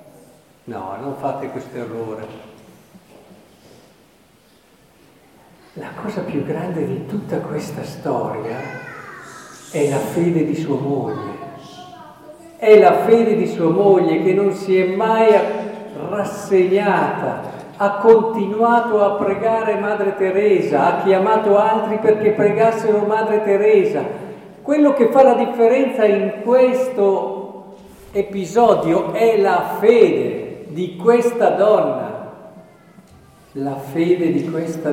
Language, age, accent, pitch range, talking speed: Italian, 50-69, native, 170-220 Hz, 105 wpm